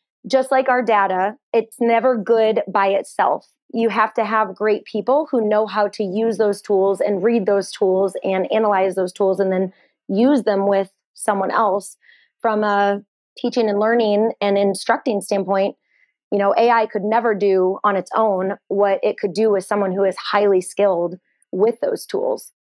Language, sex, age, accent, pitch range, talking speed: English, female, 30-49, American, 190-220 Hz, 175 wpm